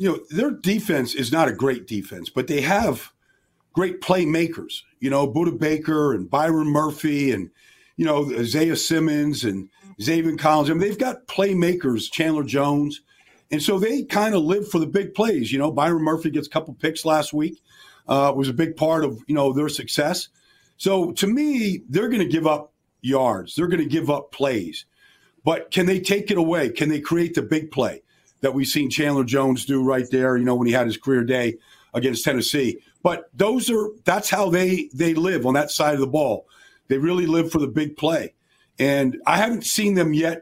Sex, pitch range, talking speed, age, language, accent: male, 145-180 Hz, 205 wpm, 50-69, English, American